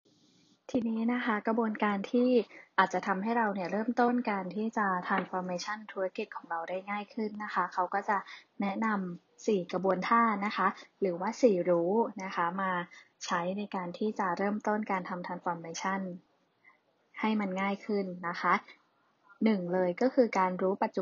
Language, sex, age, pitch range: Thai, female, 20-39, 185-215 Hz